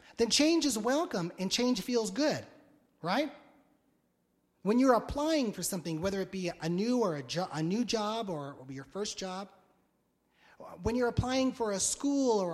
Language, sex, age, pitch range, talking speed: English, male, 30-49, 165-240 Hz, 175 wpm